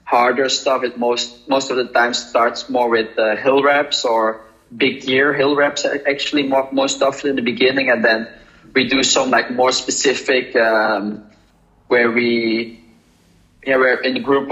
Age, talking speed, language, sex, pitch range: 20-39, 175 wpm, French, male, 120-135 Hz